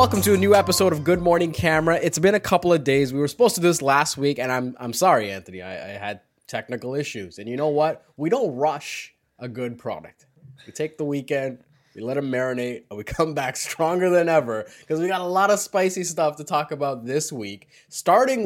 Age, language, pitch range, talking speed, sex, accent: 20-39, English, 130-180 Hz, 235 wpm, male, American